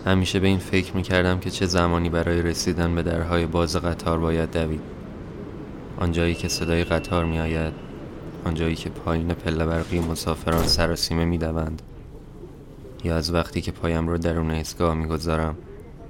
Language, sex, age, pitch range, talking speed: Persian, male, 20-39, 80-90 Hz, 150 wpm